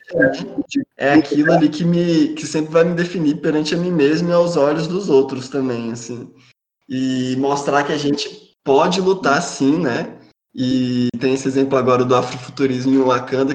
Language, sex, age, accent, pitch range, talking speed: Portuguese, male, 20-39, Brazilian, 130-155 Hz, 175 wpm